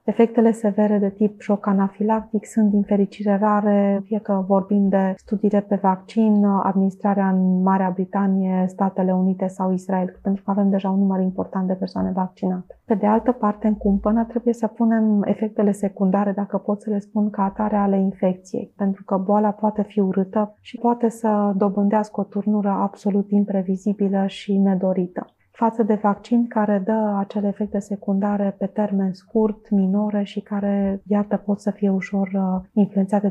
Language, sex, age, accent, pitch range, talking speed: Romanian, female, 30-49, native, 195-210 Hz, 165 wpm